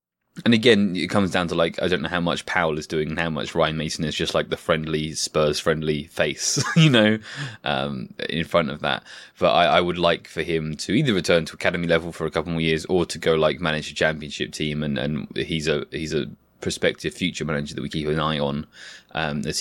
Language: English